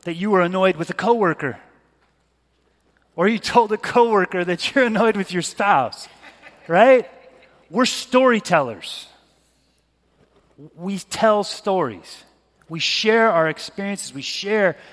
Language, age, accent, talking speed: English, 30-49, American, 120 wpm